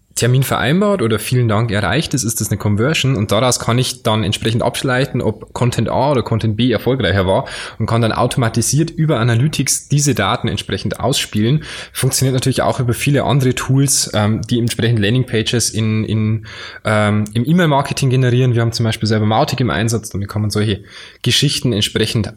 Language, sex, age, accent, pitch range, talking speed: German, male, 10-29, German, 110-135 Hz, 185 wpm